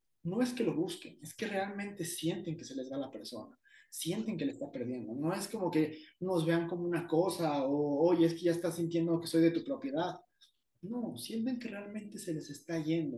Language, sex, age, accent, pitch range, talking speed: Spanish, male, 30-49, Mexican, 145-170 Hz, 230 wpm